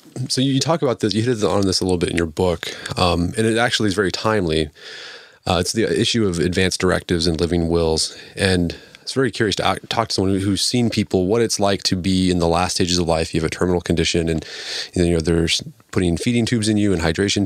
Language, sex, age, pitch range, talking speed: English, male, 30-49, 85-105 Hz, 245 wpm